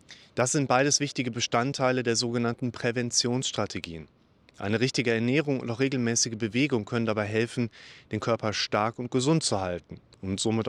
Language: German